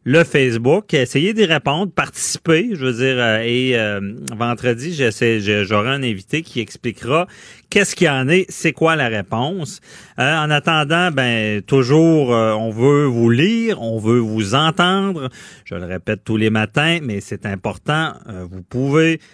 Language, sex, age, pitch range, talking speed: French, male, 40-59, 110-150 Hz, 170 wpm